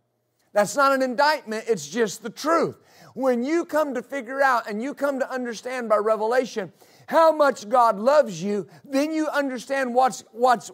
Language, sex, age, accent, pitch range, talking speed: English, male, 50-69, American, 215-280 Hz, 175 wpm